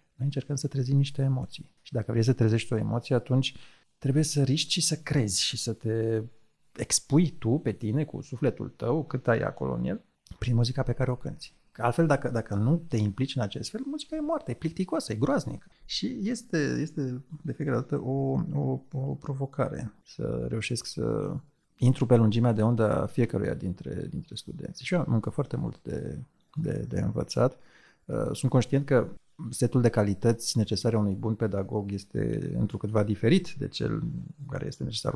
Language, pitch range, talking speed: Romanian, 110-145 Hz, 185 wpm